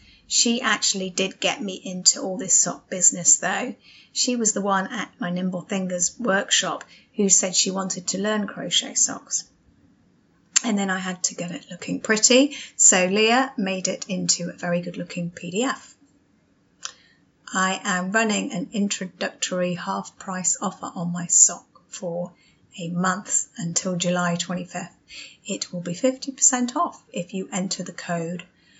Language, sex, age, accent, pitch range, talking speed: English, female, 30-49, British, 180-225 Hz, 155 wpm